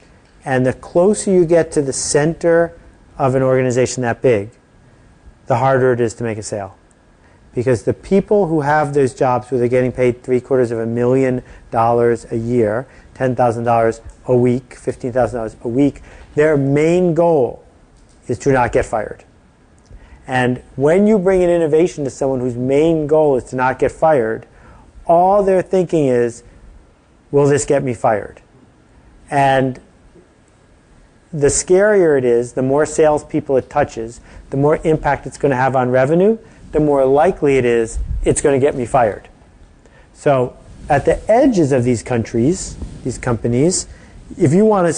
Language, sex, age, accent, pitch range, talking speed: English, male, 40-59, American, 120-155 Hz, 165 wpm